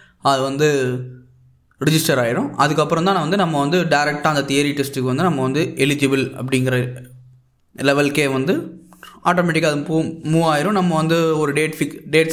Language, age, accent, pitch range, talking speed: Tamil, 20-39, native, 130-160 Hz, 155 wpm